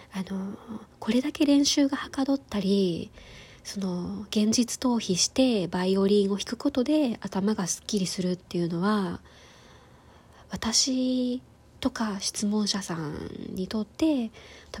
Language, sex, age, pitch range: Japanese, female, 20-39, 185-235 Hz